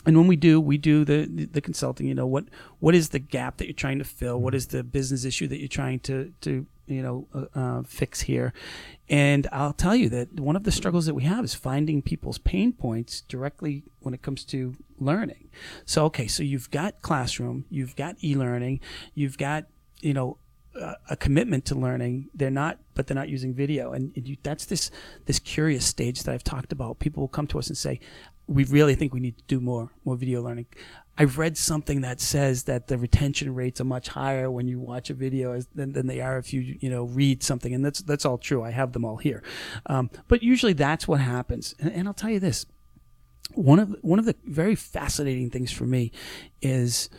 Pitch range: 125-150 Hz